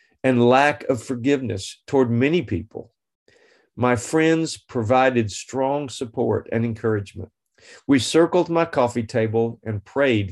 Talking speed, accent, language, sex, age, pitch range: 120 wpm, American, English, male, 50-69, 110-135 Hz